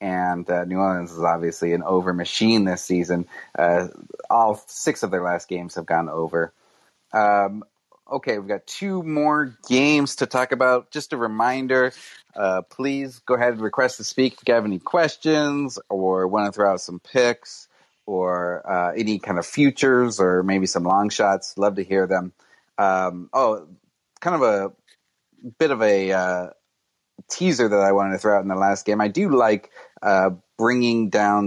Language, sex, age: English, male, 30-49